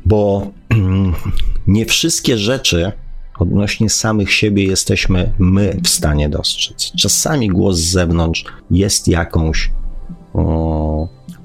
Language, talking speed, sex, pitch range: Polish, 100 wpm, male, 85-105 Hz